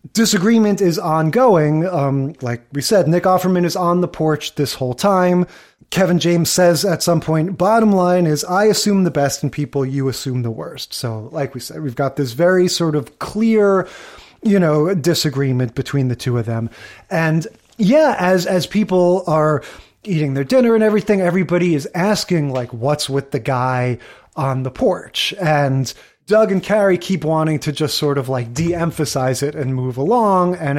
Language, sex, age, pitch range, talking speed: English, male, 30-49, 135-185 Hz, 180 wpm